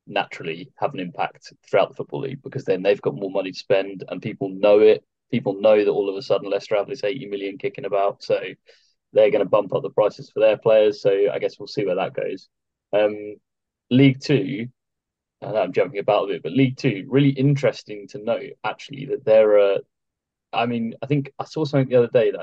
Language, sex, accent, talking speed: English, male, British, 225 wpm